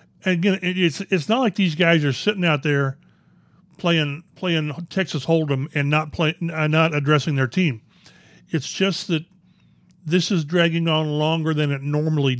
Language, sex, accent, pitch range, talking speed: English, male, American, 145-180 Hz, 160 wpm